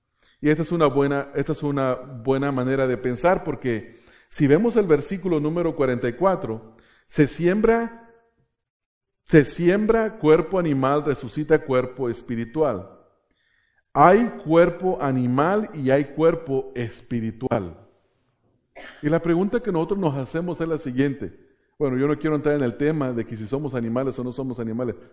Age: 40-59